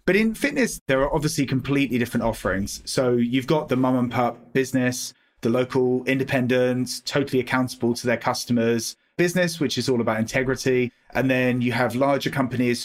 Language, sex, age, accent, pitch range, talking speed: English, male, 30-49, British, 115-135 Hz, 175 wpm